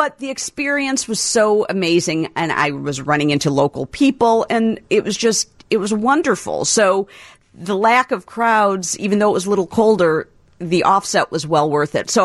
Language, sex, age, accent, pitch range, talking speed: English, female, 50-69, American, 165-210 Hz, 190 wpm